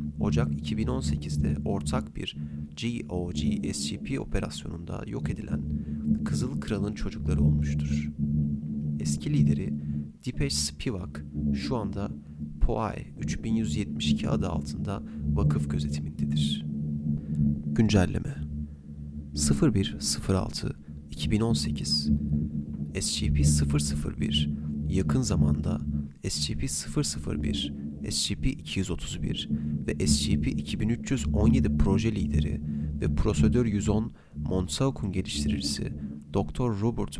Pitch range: 75-90 Hz